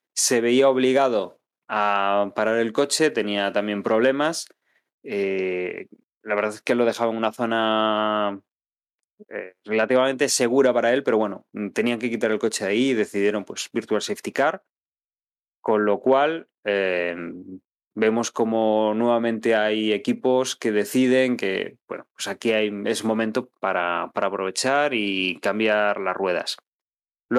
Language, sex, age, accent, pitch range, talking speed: Spanish, male, 20-39, Spanish, 105-125 Hz, 140 wpm